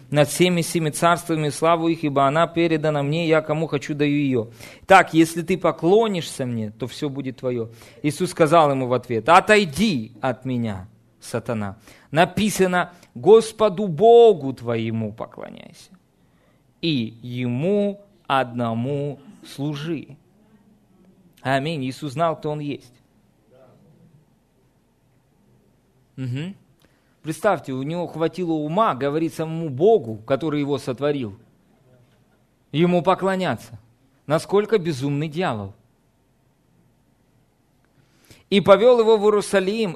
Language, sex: Russian, male